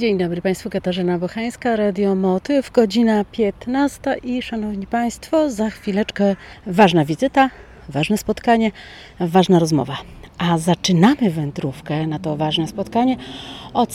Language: Polish